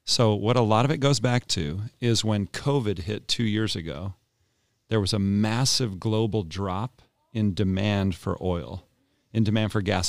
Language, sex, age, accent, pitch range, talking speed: English, male, 40-59, American, 95-115 Hz, 180 wpm